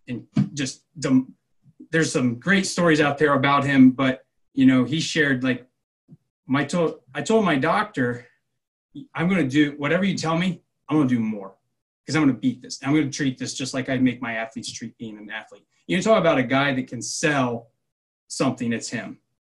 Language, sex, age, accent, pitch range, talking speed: English, male, 20-39, American, 125-155 Hz, 205 wpm